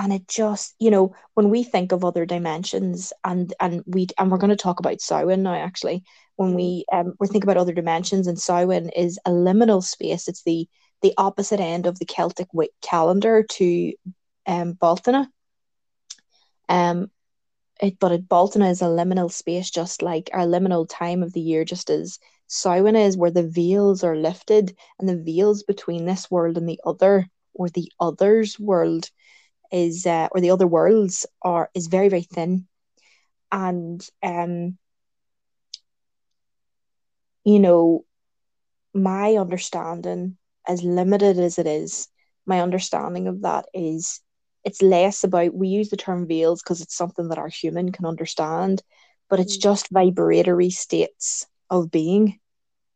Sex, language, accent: female, English, Irish